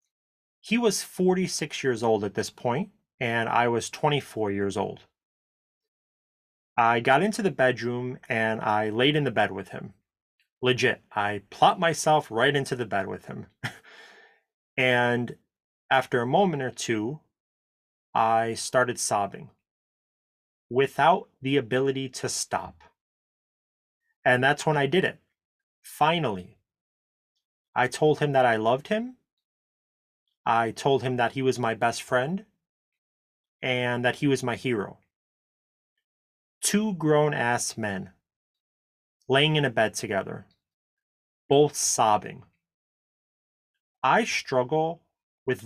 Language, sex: English, male